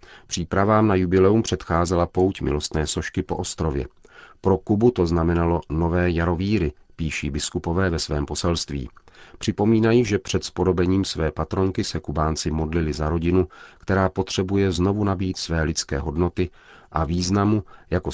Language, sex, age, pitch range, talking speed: Czech, male, 40-59, 80-95 Hz, 135 wpm